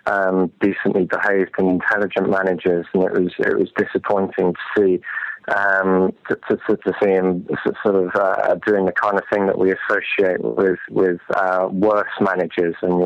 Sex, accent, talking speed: male, British, 170 wpm